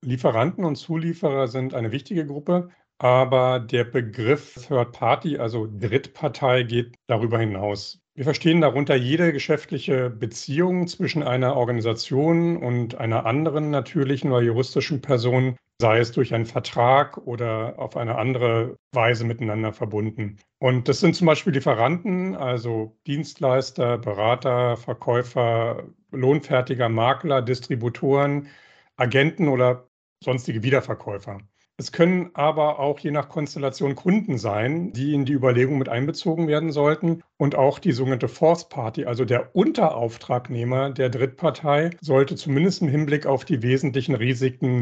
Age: 50-69